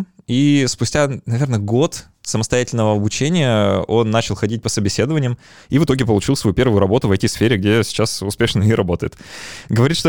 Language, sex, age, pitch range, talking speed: Russian, male, 20-39, 100-130 Hz, 160 wpm